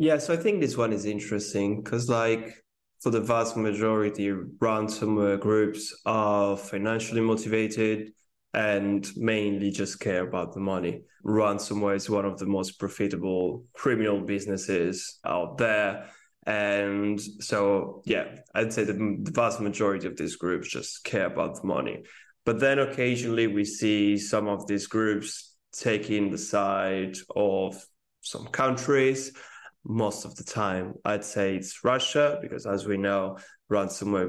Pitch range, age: 100-110 Hz, 20-39